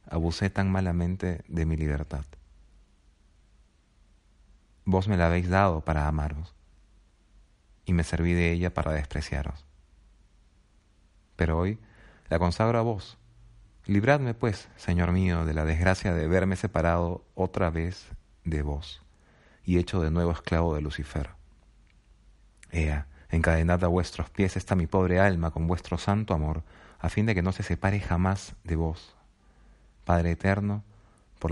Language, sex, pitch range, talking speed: Spanish, male, 75-95 Hz, 140 wpm